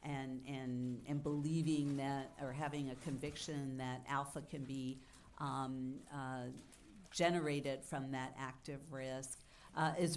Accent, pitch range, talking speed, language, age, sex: American, 135-165 Hz, 125 wpm, English, 50-69, female